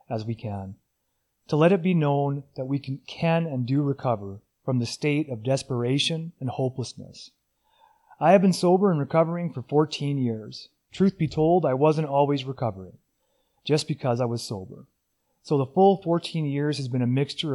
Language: English